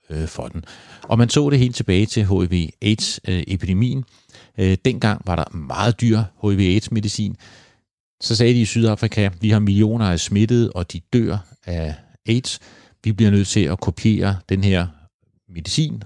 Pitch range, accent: 85-110 Hz, native